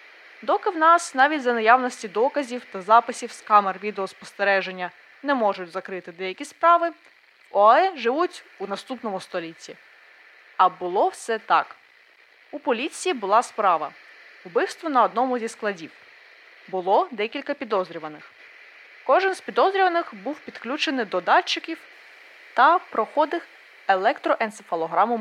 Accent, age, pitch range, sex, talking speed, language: native, 20-39, 190-305 Hz, female, 115 wpm, Ukrainian